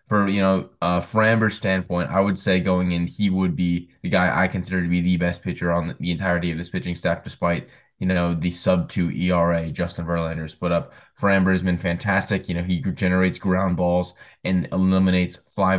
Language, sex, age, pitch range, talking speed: English, male, 10-29, 90-95 Hz, 200 wpm